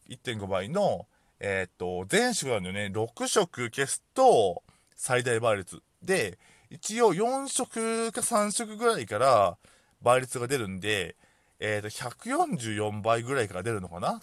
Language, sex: Japanese, male